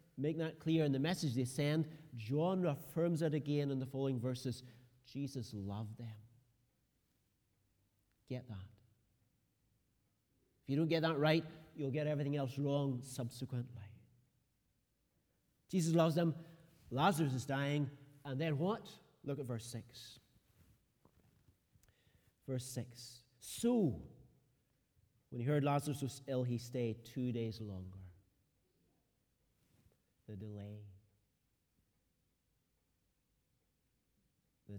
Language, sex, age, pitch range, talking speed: English, male, 50-69, 115-160 Hz, 110 wpm